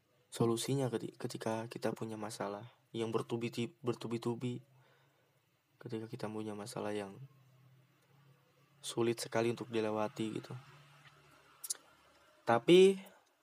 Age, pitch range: 20-39, 115-140 Hz